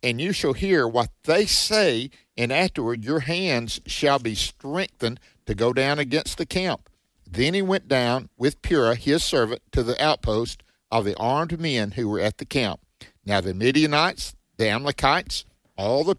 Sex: male